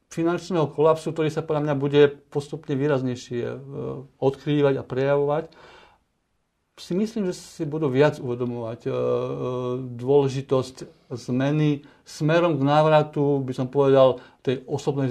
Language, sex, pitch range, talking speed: Slovak, male, 135-160 Hz, 115 wpm